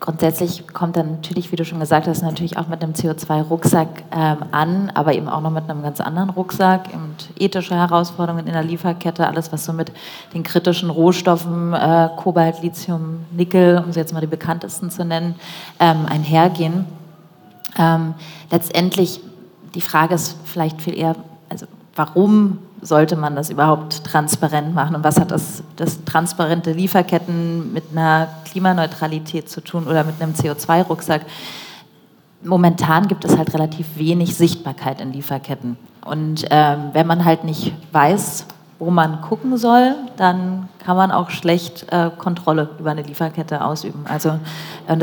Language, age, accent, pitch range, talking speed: German, 30-49, German, 155-175 Hz, 155 wpm